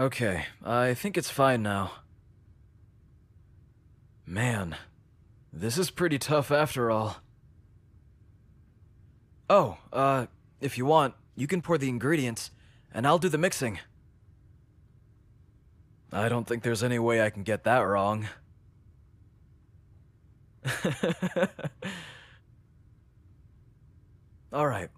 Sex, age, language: male, 20-39, English